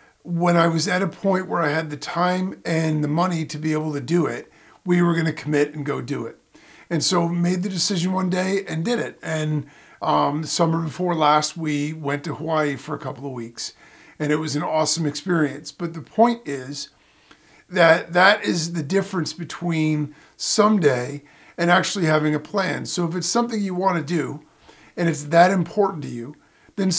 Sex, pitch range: male, 150-195 Hz